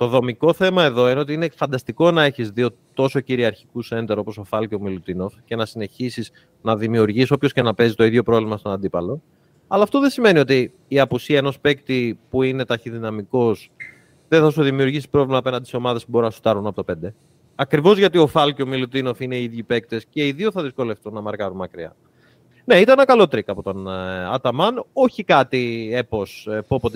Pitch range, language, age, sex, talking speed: 115-165 Hz, Greek, 30-49, male, 205 wpm